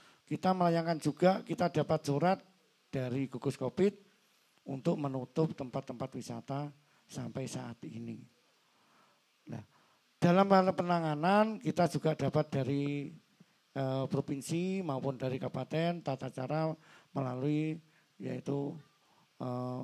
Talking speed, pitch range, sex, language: 105 wpm, 135-170 Hz, male, Indonesian